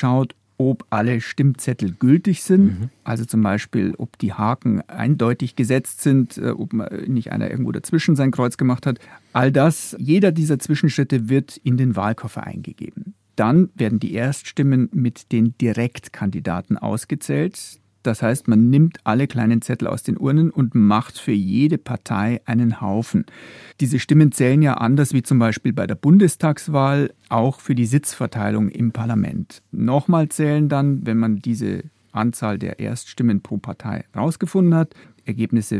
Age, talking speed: 40-59, 150 wpm